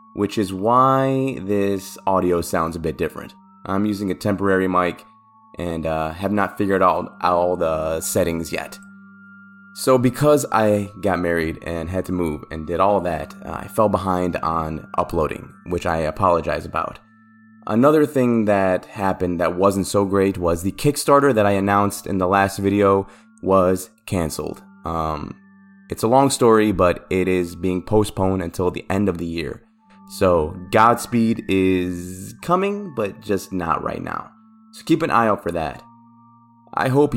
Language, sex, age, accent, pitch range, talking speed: English, male, 20-39, American, 90-115 Hz, 160 wpm